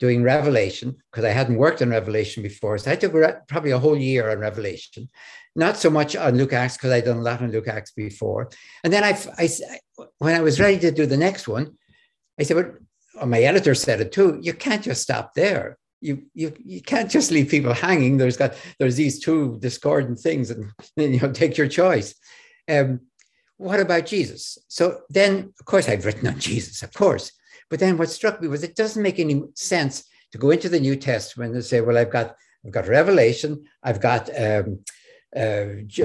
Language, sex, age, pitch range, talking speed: English, male, 60-79, 125-180 Hz, 210 wpm